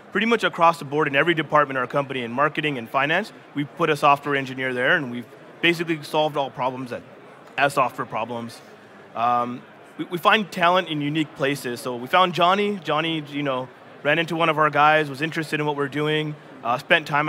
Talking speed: 200 wpm